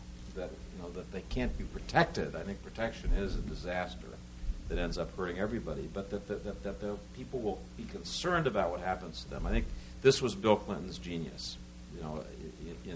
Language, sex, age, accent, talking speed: English, male, 60-79, American, 205 wpm